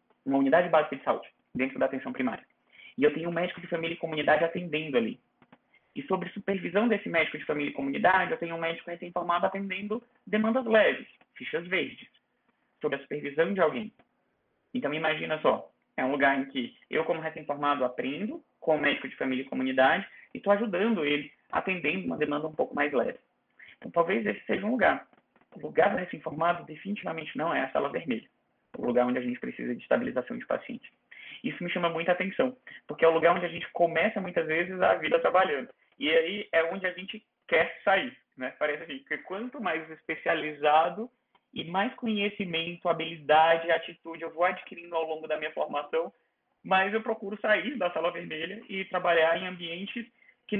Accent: Brazilian